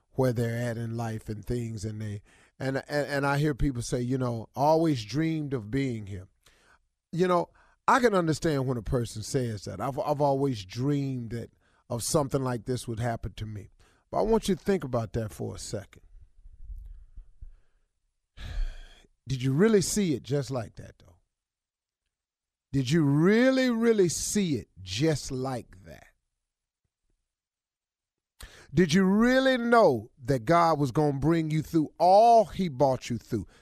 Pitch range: 115-180 Hz